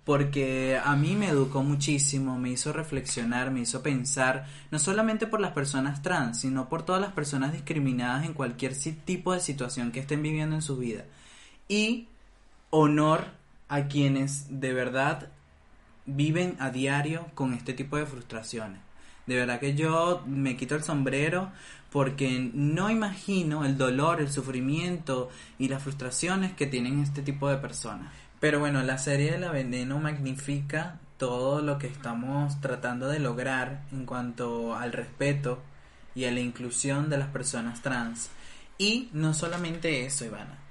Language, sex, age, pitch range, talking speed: Spanish, male, 20-39, 130-150 Hz, 155 wpm